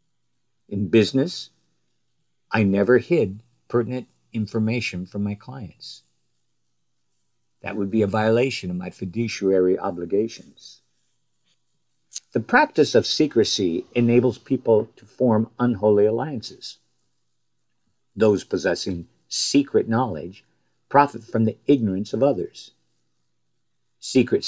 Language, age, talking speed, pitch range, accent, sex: English, 50-69, 100 wpm, 95-125 Hz, American, male